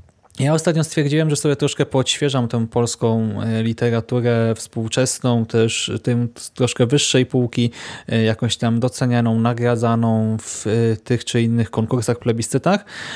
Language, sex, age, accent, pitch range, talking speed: Polish, male, 20-39, native, 115-140 Hz, 120 wpm